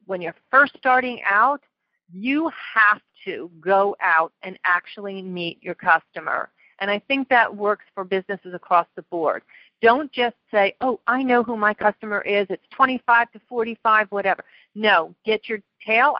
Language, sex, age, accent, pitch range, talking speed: English, female, 50-69, American, 190-240 Hz, 165 wpm